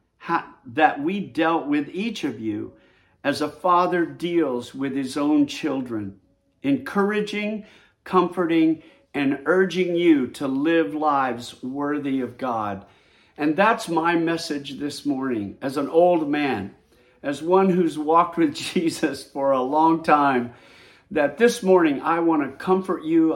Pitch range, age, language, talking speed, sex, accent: 135-180 Hz, 50-69, English, 140 wpm, male, American